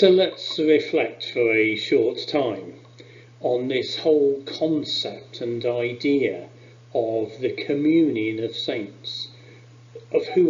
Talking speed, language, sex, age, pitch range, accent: 115 wpm, English, male, 40-59, 115-140 Hz, British